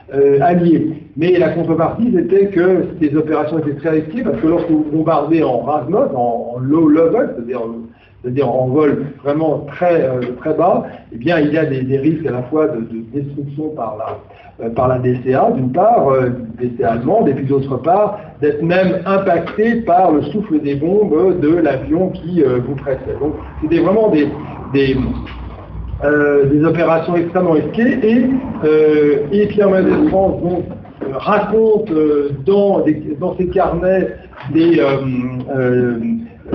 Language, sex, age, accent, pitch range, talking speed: French, male, 60-79, French, 140-190 Hz, 165 wpm